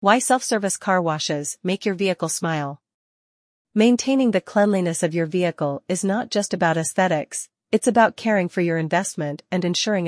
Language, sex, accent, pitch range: English, female, American, 165-200 Hz